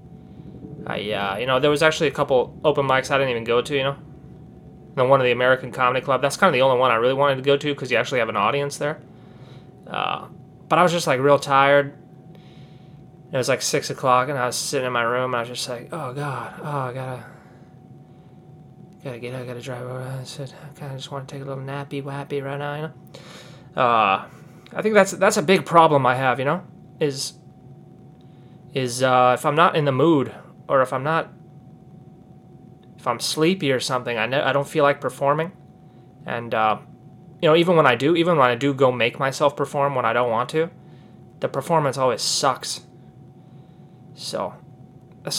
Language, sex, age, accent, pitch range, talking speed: English, male, 20-39, American, 130-160 Hz, 210 wpm